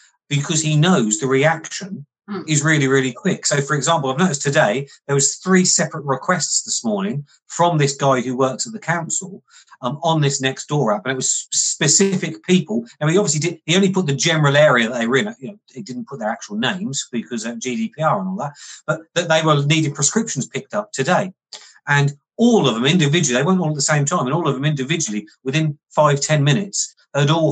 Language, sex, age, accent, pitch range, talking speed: English, male, 40-59, British, 135-170 Hz, 220 wpm